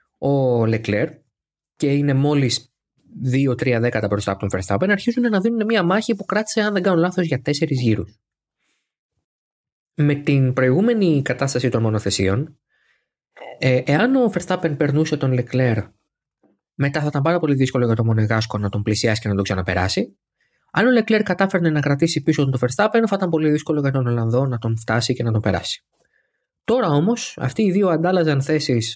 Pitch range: 120-175 Hz